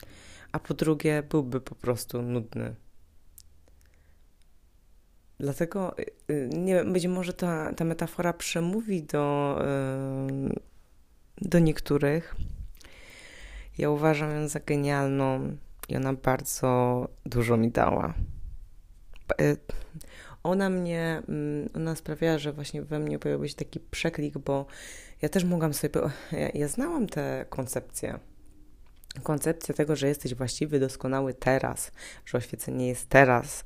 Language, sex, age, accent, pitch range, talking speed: Polish, female, 20-39, native, 115-150 Hz, 110 wpm